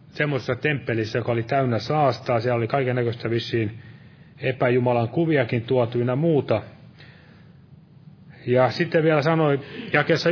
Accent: native